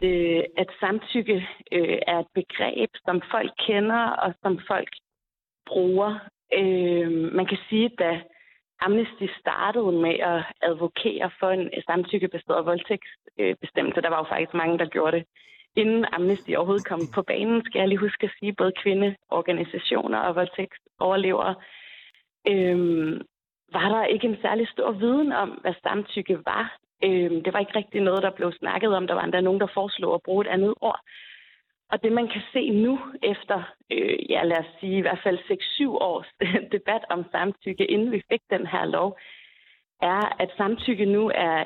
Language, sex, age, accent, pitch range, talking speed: Danish, female, 30-49, native, 180-215 Hz, 165 wpm